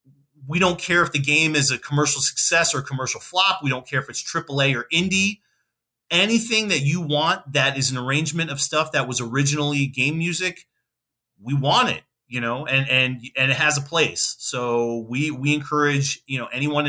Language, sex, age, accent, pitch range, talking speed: English, male, 30-49, American, 130-150 Hz, 195 wpm